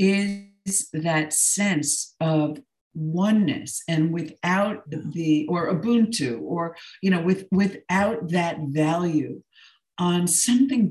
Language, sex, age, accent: English, female, 50-69, American